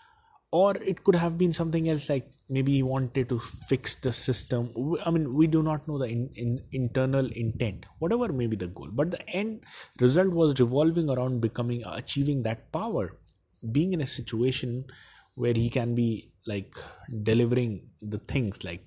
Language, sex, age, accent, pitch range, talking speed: English, male, 30-49, Indian, 110-140 Hz, 175 wpm